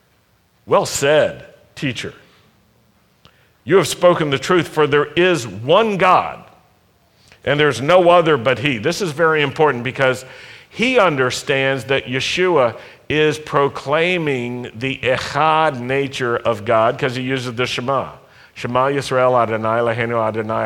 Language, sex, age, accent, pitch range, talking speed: English, male, 50-69, American, 120-160 Hz, 130 wpm